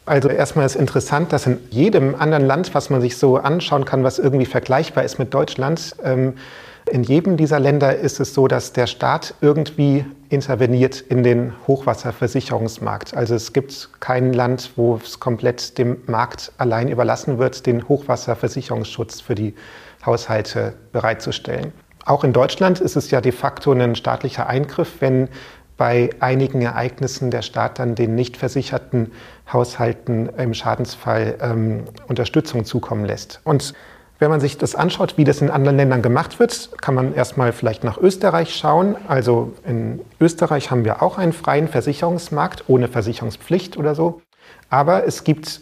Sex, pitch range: male, 120-145 Hz